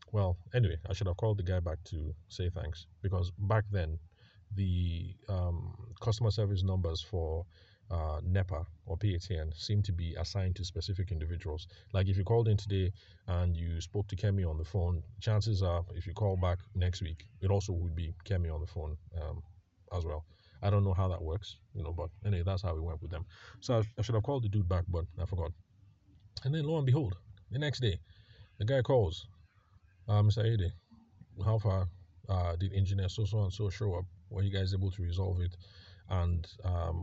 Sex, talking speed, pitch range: male, 205 wpm, 90-100 Hz